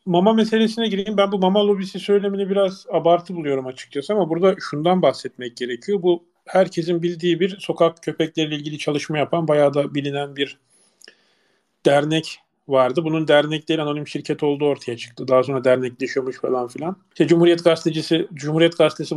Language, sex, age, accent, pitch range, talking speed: Turkish, male, 40-59, native, 140-185 Hz, 155 wpm